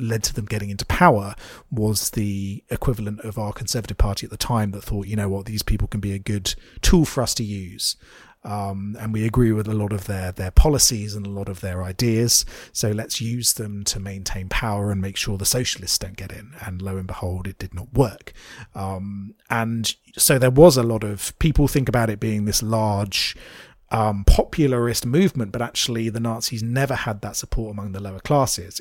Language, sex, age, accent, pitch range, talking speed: English, male, 30-49, British, 100-120 Hz, 210 wpm